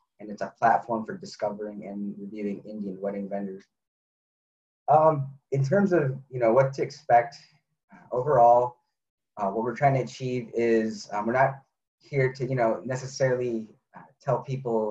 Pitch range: 110-135 Hz